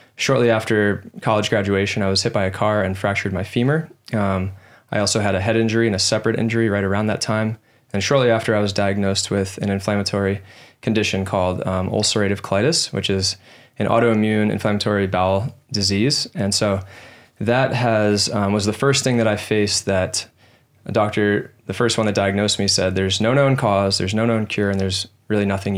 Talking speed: 200 wpm